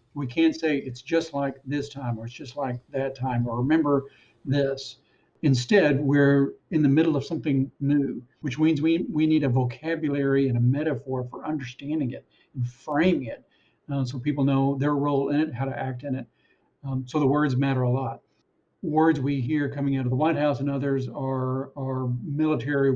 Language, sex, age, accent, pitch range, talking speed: English, male, 60-79, American, 130-150 Hz, 195 wpm